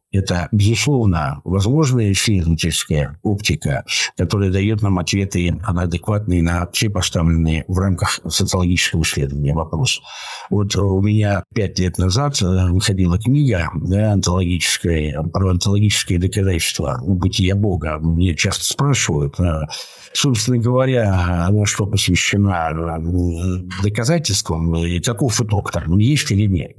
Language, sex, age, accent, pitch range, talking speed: Russian, male, 60-79, native, 90-110 Hz, 110 wpm